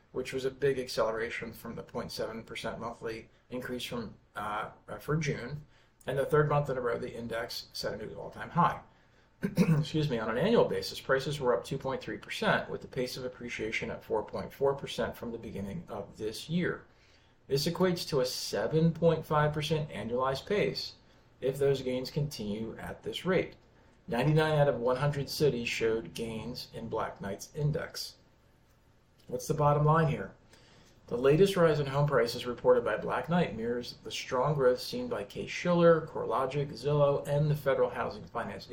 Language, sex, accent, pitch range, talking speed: English, male, American, 120-160 Hz, 165 wpm